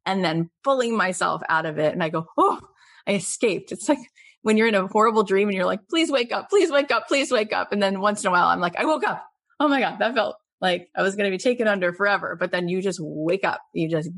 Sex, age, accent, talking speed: female, 30-49, American, 280 wpm